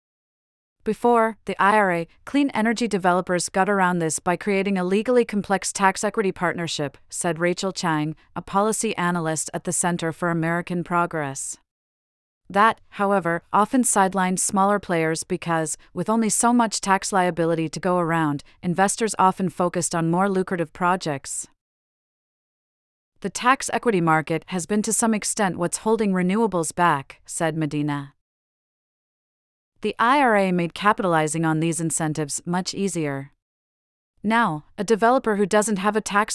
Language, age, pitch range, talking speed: English, 30-49, 165-205 Hz, 135 wpm